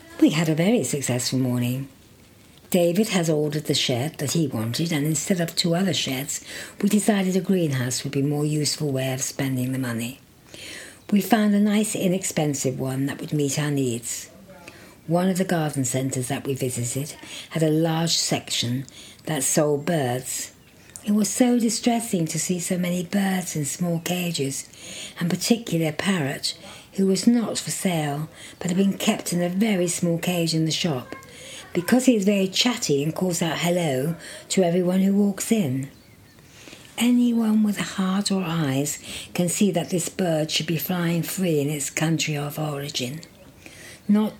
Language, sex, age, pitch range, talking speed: English, female, 60-79, 140-190 Hz, 170 wpm